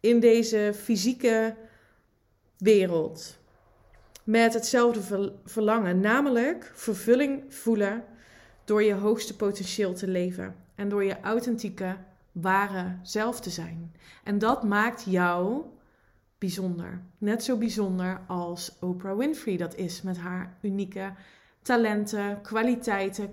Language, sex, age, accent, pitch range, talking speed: Dutch, female, 20-39, Dutch, 185-235 Hz, 110 wpm